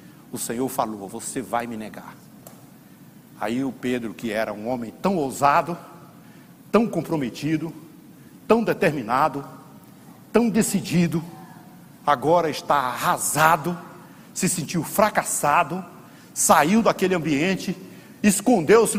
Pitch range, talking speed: 180-255 Hz, 100 wpm